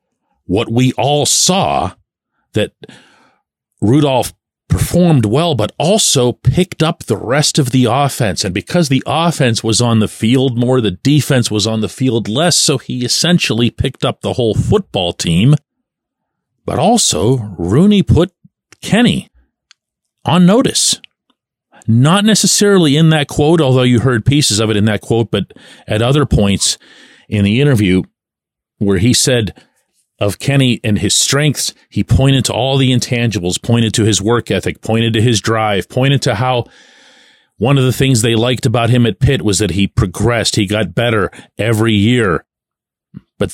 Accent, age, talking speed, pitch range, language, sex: American, 40-59, 160 wpm, 110-155 Hz, English, male